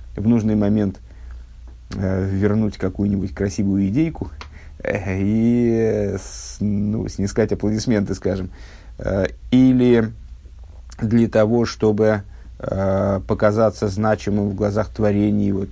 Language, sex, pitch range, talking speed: Russian, male, 95-115 Hz, 80 wpm